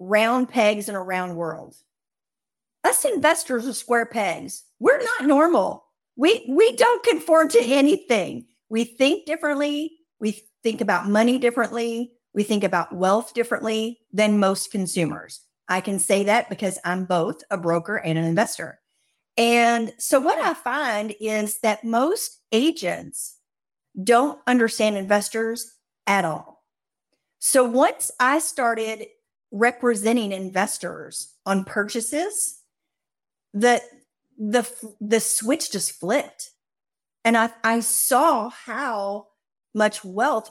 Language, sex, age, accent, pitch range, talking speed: English, female, 50-69, American, 195-250 Hz, 125 wpm